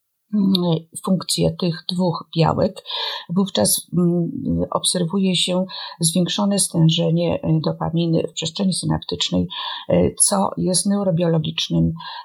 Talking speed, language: 80 wpm, Polish